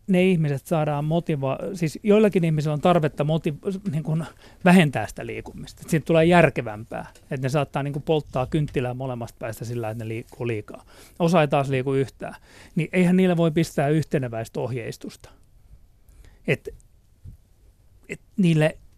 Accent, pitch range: native, 125-190 Hz